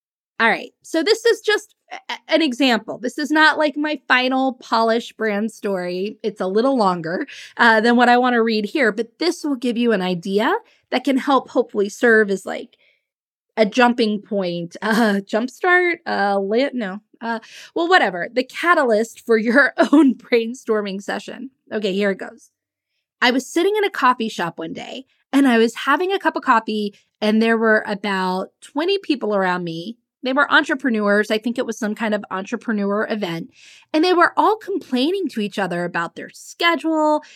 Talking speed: 180 wpm